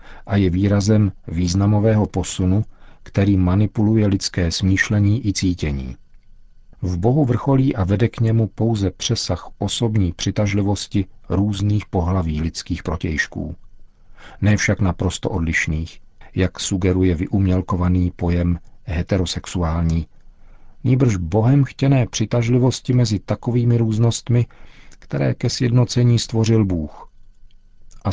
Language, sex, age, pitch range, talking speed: Czech, male, 50-69, 90-105 Hz, 100 wpm